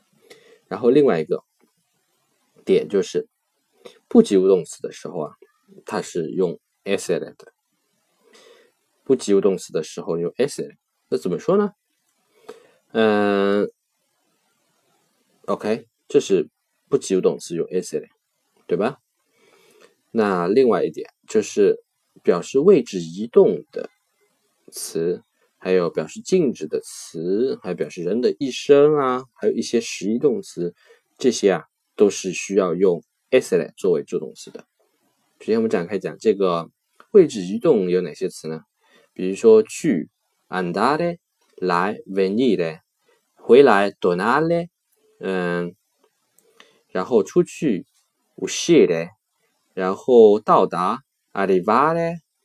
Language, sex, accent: Chinese, male, native